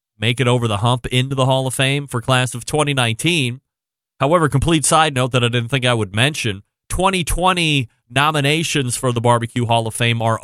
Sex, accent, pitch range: male, American, 115-160 Hz